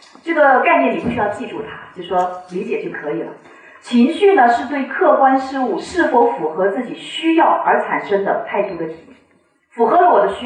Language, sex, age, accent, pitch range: Chinese, female, 40-59, native, 225-325 Hz